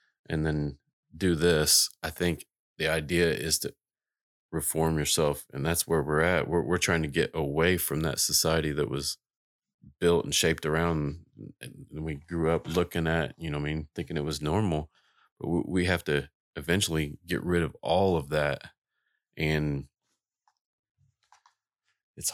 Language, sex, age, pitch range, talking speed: English, male, 30-49, 75-85 Hz, 165 wpm